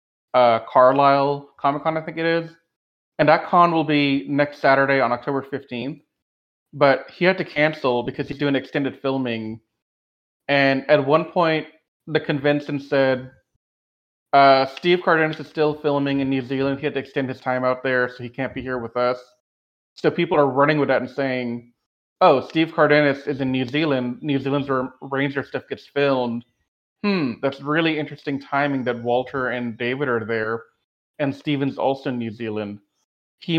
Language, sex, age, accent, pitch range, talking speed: English, male, 30-49, American, 120-145 Hz, 175 wpm